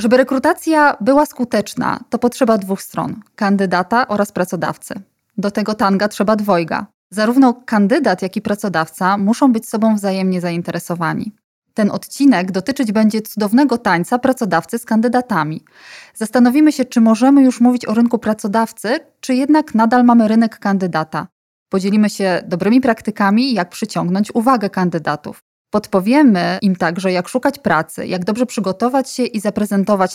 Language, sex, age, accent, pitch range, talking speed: Polish, female, 20-39, native, 185-235 Hz, 140 wpm